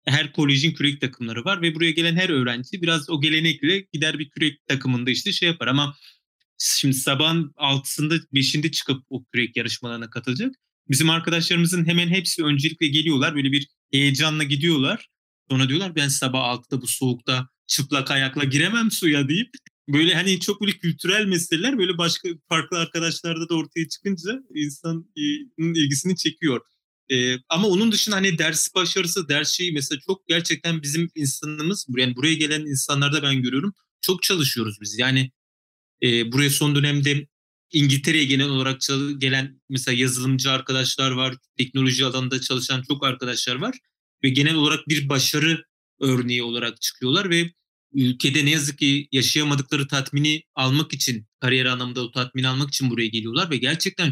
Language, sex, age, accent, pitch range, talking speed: Turkish, male, 30-49, native, 130-165 Hz, 155 wpm